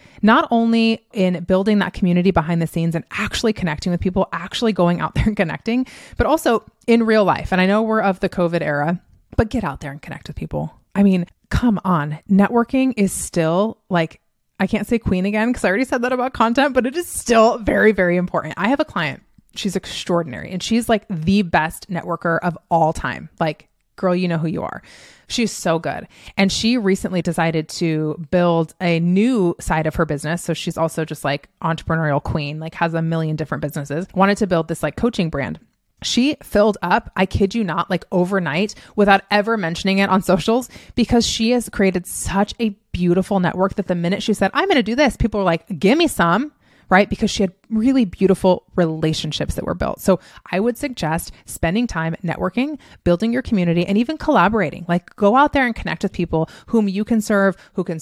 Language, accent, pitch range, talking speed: English, American, 170-215 Hz, 210 wpm